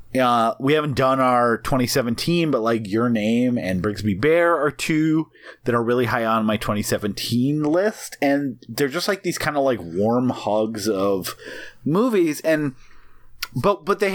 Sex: male